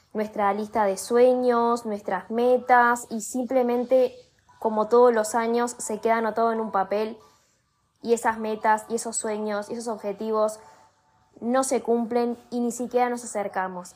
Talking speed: 155 wpm